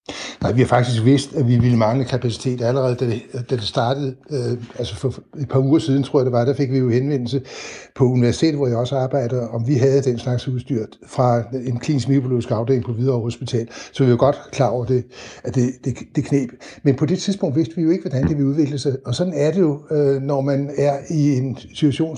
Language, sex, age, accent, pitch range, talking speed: Danish, male, 60-79, native, 130-155 Hz, 230 wpm